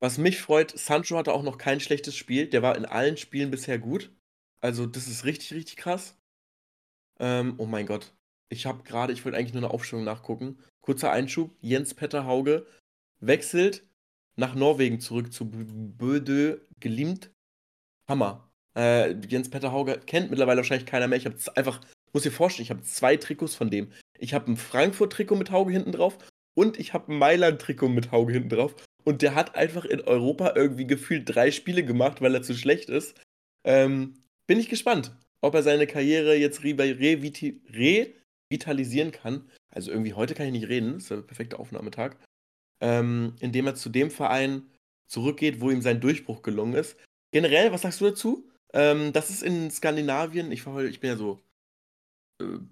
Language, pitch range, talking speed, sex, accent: German, 120-150 Hz, 180 wpm, male, German